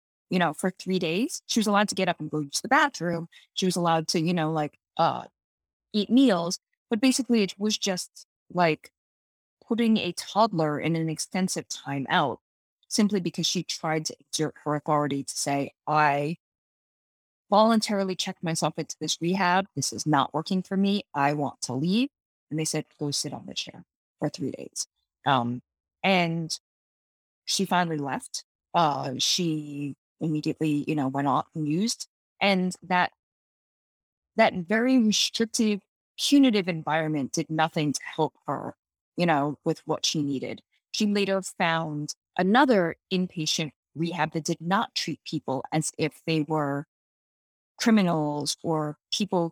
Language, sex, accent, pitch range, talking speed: English, female, American, 150-190 Hz, 155 wpm